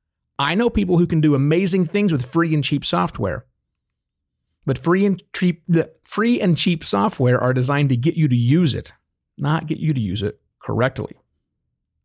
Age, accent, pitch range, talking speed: 30-49, American, 110-175 Hz, 180 wpm